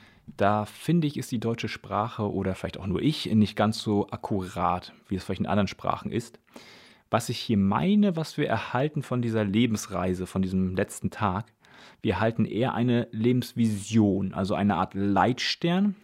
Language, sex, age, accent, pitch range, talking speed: German, male, 30-49, German, 100-120 Hz, 170 wpm